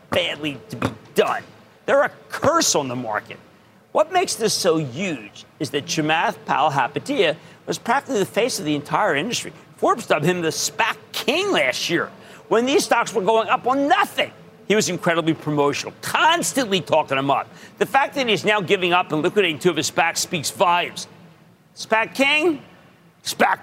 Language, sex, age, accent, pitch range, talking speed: English, male, 50-69, American, 155-220 Hz, 180 wpm